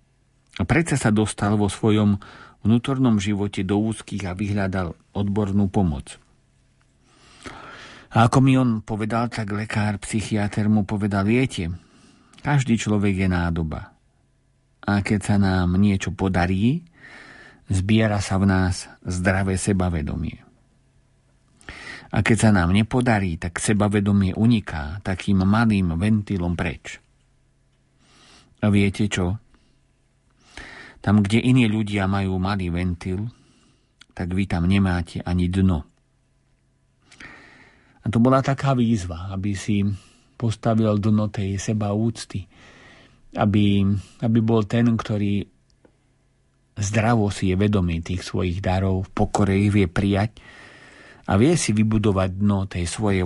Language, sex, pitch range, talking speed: Slovak, male, 95-115 Hz, 115 wpm